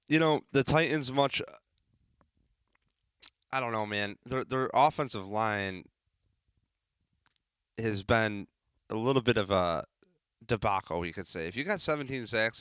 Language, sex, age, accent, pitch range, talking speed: English, male, 30-49, American, 100-130 Hz, 140 wpm